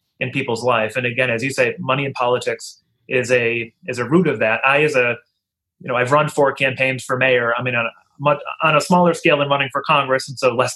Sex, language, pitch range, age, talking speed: male, English, 125-145 Hz, 30-49, 250 wpm